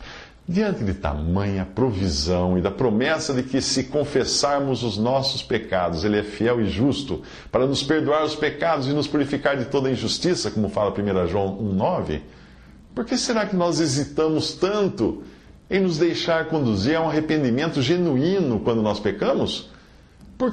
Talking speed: 160 wpm